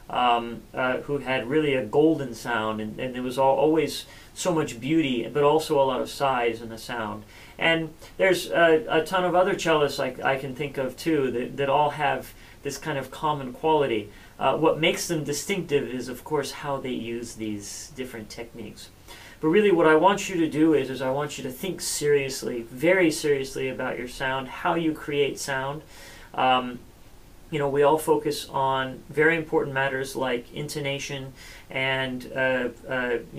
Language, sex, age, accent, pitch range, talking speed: English, male, 40-59, American, 120-150 Hz, 180 wpm